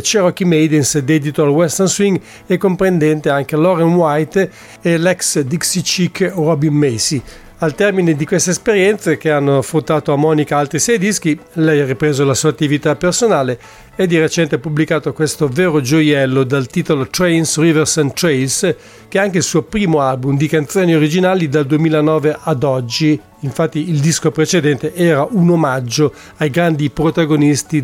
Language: English